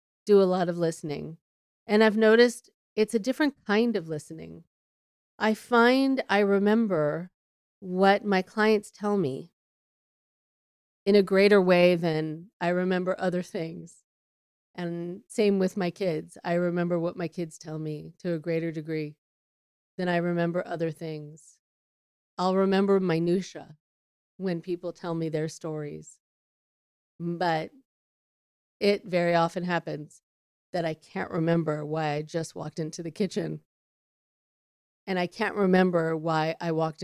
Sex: female